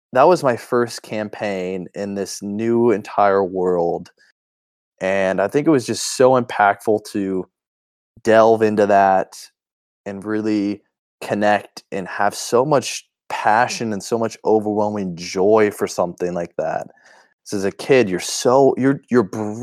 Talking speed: 145 wpm